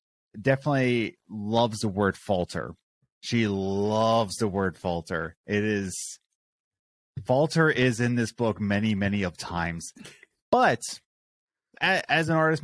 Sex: male